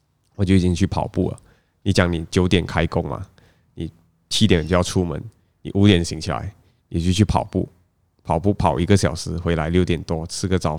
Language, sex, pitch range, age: Chinese, male, 90-110 Hz, 20-39